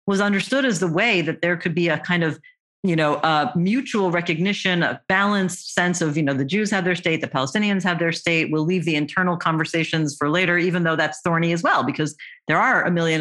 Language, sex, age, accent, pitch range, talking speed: English, female, 40-59, American, 155-195 Hz, 230 wpm